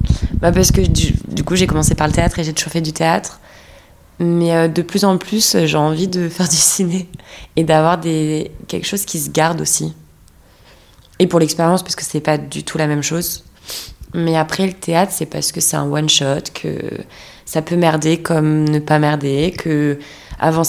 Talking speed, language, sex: 200 wpm, French, female